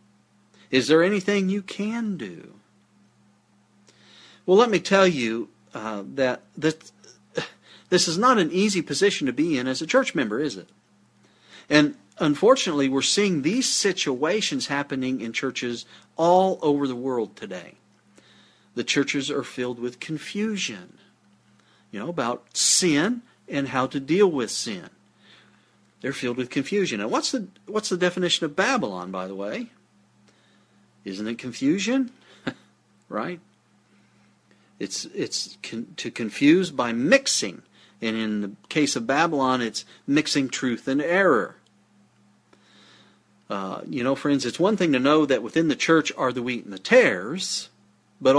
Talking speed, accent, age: 140 wpm, American, 50-69